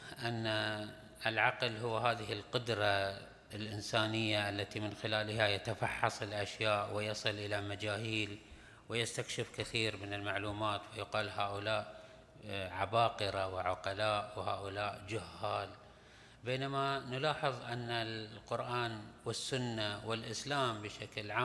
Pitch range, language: 105-130 Hz, Arabic